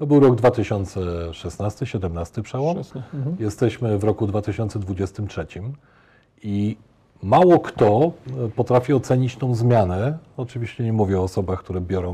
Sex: male